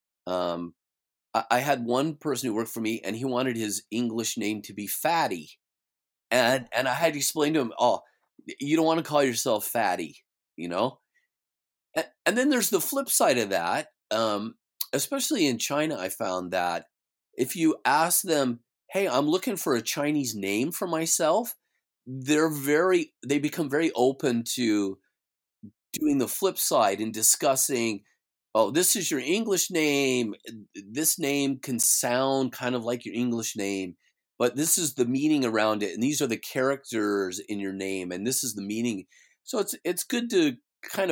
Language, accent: English, American